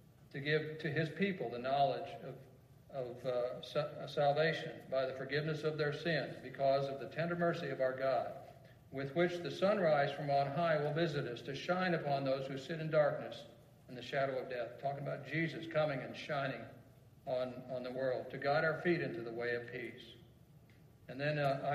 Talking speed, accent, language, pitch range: 195 wpm, American, English, 135-160 Hz